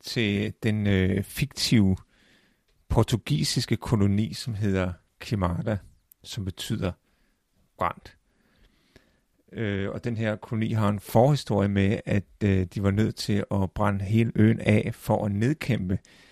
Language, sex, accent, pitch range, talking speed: Danish, male, native, 100-120 Hz, 120 wpm